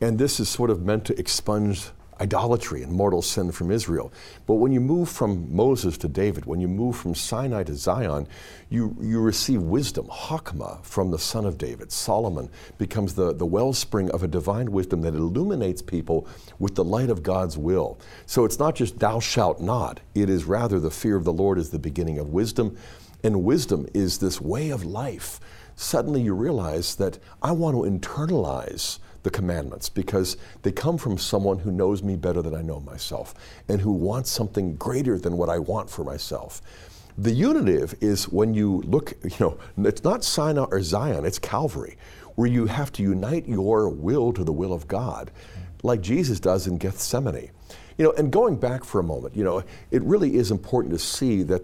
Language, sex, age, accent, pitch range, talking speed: English, male, 50-69, American, 90-110 Hz, 195 wpm